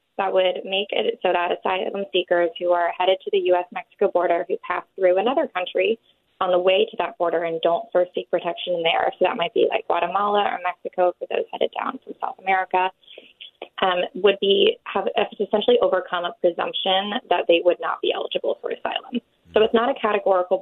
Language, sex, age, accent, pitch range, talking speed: English, female, 20-39, American, 175-225 Hz, 200 wpm